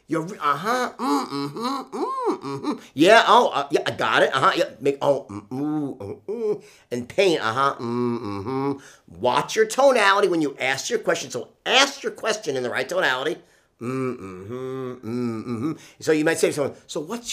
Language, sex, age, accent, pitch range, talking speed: English, male, 50-69, American, 125-210 Hz, 170 wpm